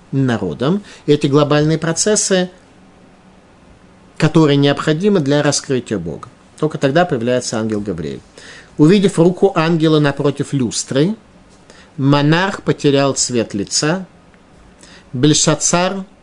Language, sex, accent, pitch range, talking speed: Russian, male, native, 115-155 Hz, 90 wpm